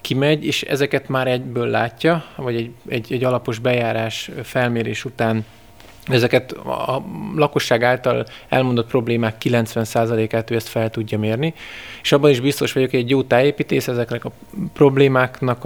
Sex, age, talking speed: male, 20-39, 150 wpm